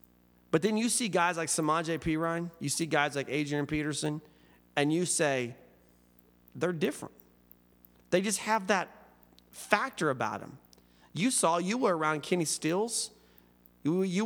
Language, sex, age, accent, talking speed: English, male, 30-49, American, 145 wpm